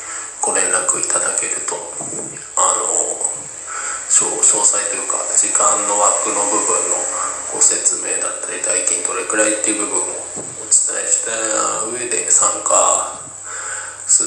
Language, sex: Japanese, male